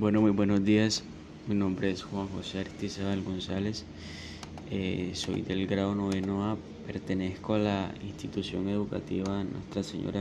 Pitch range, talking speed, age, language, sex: 95-110 Hz, 140 wpm, 20-39, Spanish, male